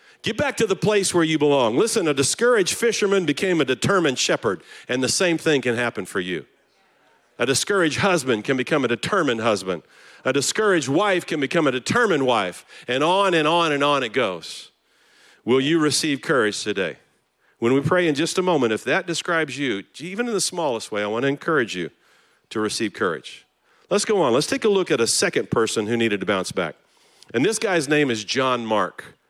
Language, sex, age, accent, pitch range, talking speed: English, male, 50-69, American, 120-170 Hz, 205 wpm